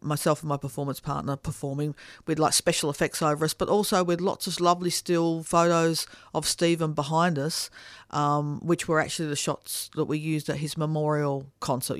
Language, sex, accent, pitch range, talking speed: English, female, Australian, 140-165 Hz, 185 wpm